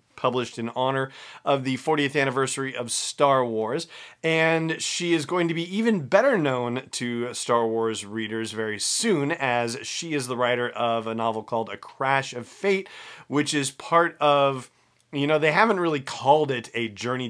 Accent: American